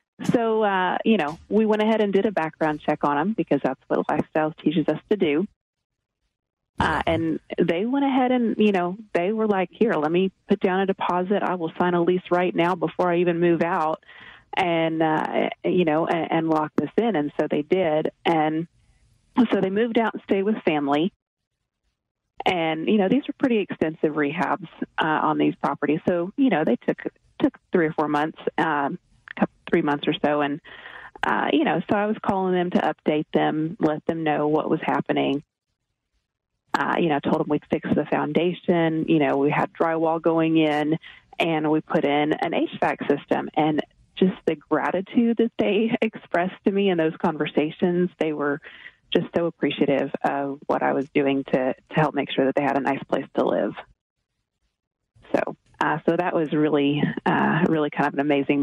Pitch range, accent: 150-200 Hz, American